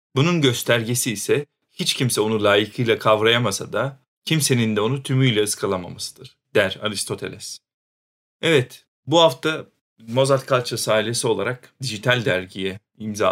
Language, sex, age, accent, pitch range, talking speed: Turkish, male, 40-59, native, 110-140 Hz, 115 wpm